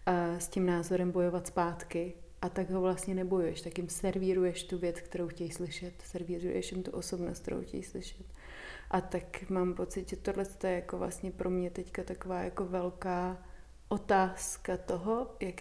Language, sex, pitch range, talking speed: Czech, female, 180-205 Hz, 170 wpm